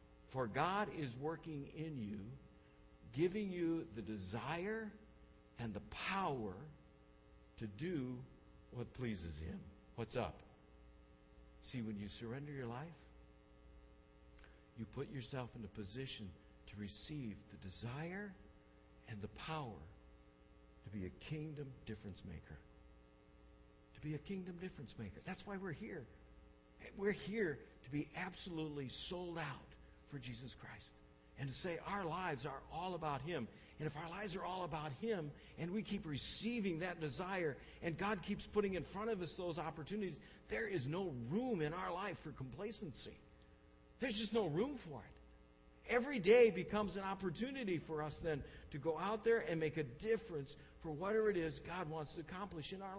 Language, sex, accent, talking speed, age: English, male, American, 155 wpm, 60-79